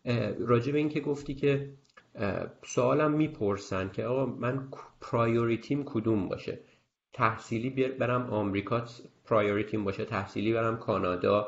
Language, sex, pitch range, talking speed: Persian, male, 110-140 Hz, 110 wpm